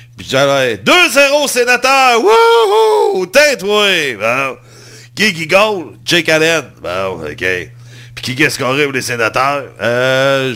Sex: male